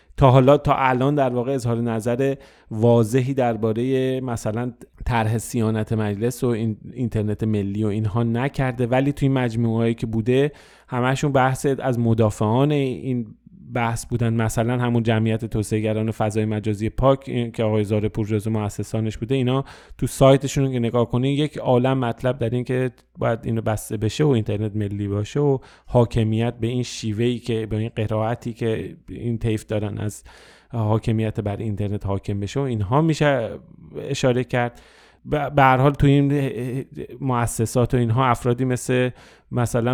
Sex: male